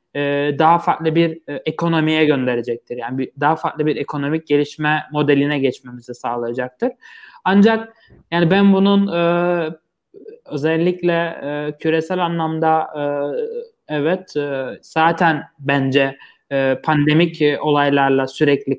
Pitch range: 140-165 Hz